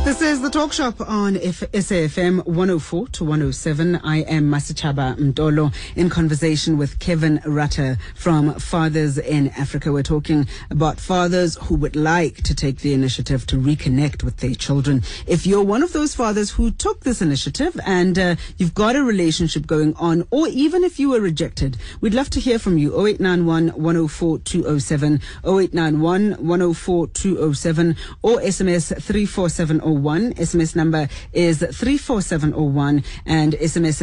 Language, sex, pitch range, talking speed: English, female, 155-190 Hz, 150 wpm